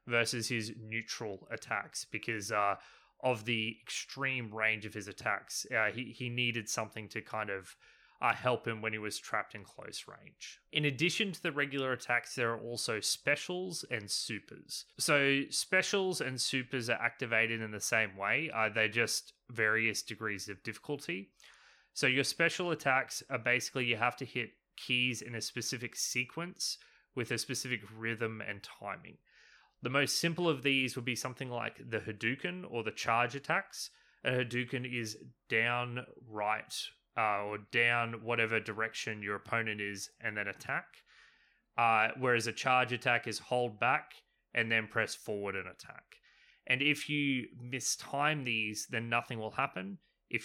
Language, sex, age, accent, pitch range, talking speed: English, male, 20-39, Australian, 110-130 Hz, 160 wpm